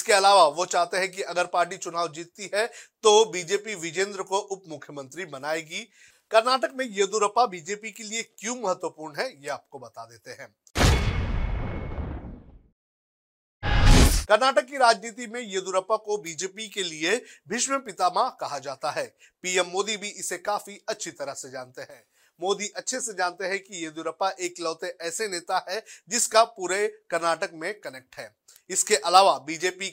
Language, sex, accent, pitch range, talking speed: Hindi, male, native, 170-210 Hz, 145 wpm